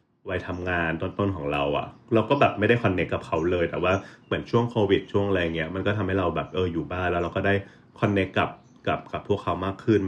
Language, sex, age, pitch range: Thai, male, 30-49, 85-115 Hz